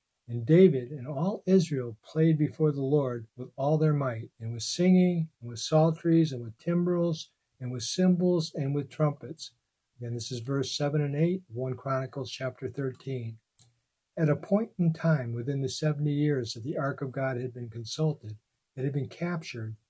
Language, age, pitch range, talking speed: English, 60-79, 120-160 Hz, 185 wpm